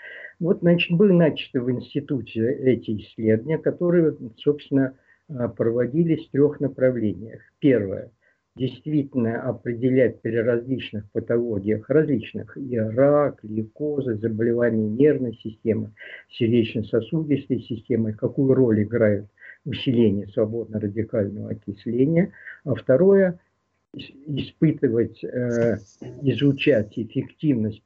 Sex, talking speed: male, 90 wpm